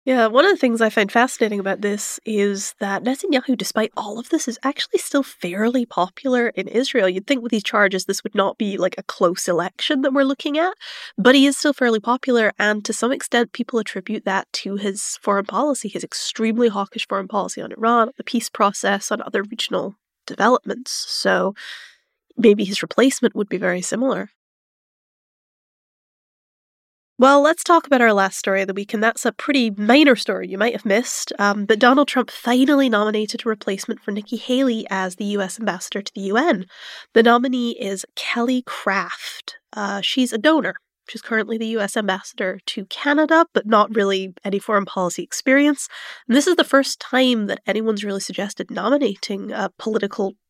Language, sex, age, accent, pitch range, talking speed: English, female, 20-39, American, 200-255 Hz, 180 wpm